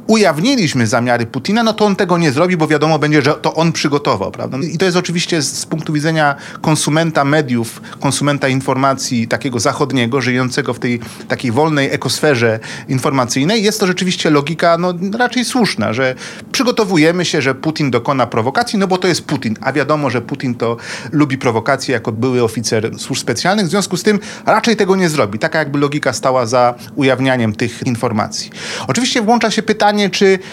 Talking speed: 175 wpm